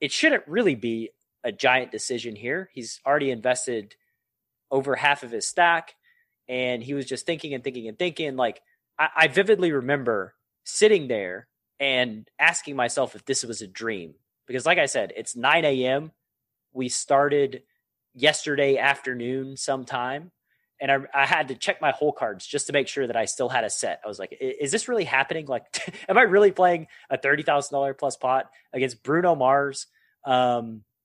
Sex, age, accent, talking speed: male, 30-49, American, 180 wpm